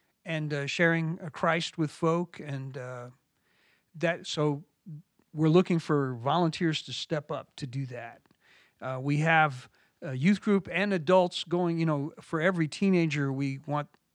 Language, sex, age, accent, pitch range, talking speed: English, male, 50-69, American, 140-165 Hz, 155 wpm